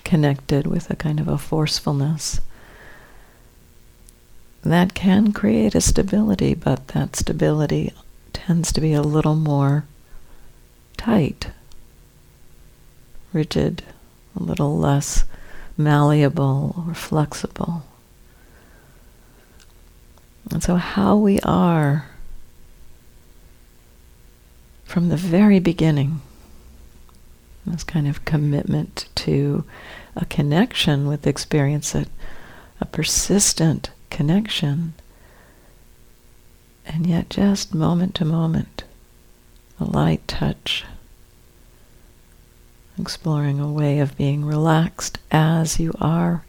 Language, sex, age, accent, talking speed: English, female, 60-79, American, 90 wpm